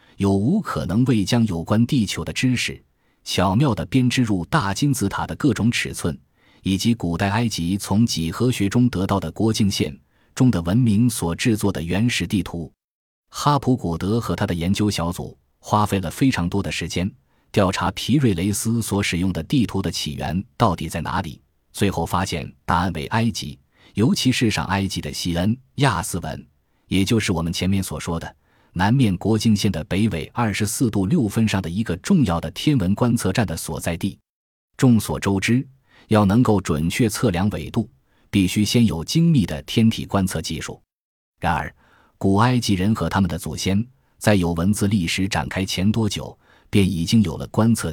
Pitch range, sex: 85-115 Hz, male